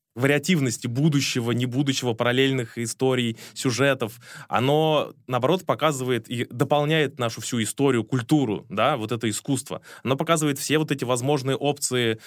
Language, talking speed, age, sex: Russian, 130 wpm, 20-39, male